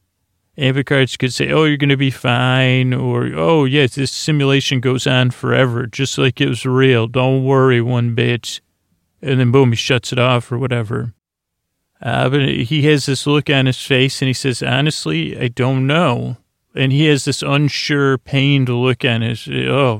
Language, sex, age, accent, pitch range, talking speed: English, male, 30-49, American, 115-130 Hz, 185 wpm